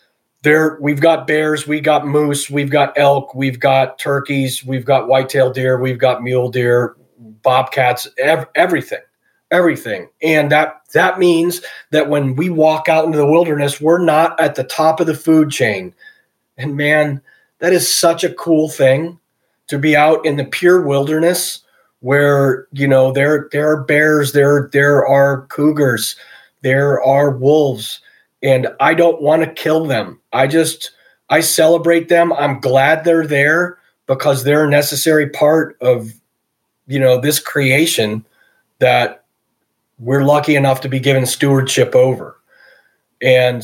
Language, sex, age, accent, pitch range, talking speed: English, male, 40-59, American, 135-160 Hz, 155 wpm